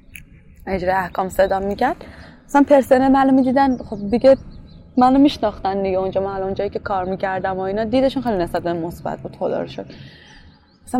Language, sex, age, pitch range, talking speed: Persian, female, 10-29, 205-270 Hz, 165 wpm